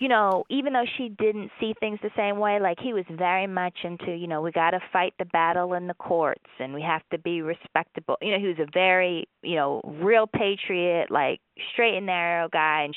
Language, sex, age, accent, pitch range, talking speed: English, female, 20-39, American, 165-215 Hz, 230 wpm